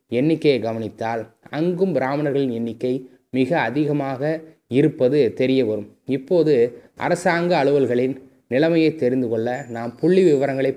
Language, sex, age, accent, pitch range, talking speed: Tamil, male, 20-39, native, 120-150 Hz, 105 wpm